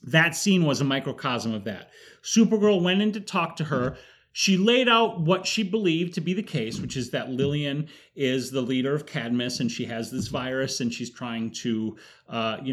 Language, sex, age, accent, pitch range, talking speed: English, male, 30-49, American, 125-170 Hz, 205 wpm